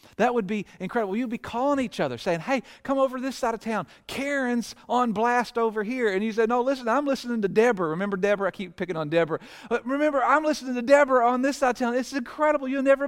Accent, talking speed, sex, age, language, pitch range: American, 250 wpm, male, 40-59, English, 150-235 Hz